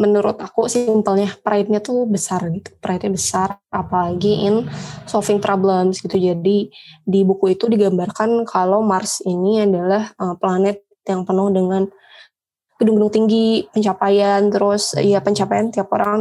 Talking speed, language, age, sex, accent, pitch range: 135 wpm, Indonesian, 20-39, female, native, 190-215 Hz